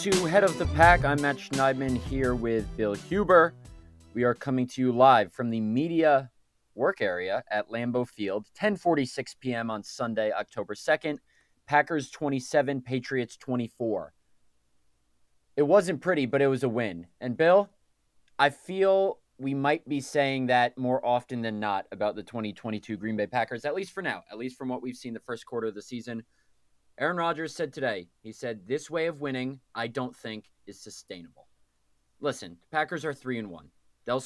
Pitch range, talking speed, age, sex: 110-140 Hz, 175 wpm, 20-39, male